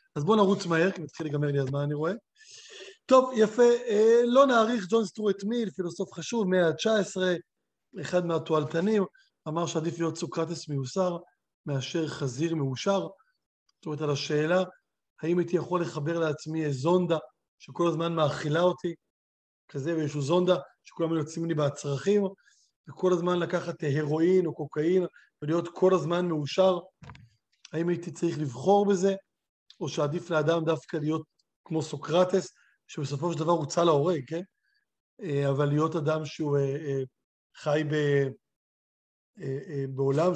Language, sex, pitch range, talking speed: Hebrew, male, 150-195 Hz, 135 wpm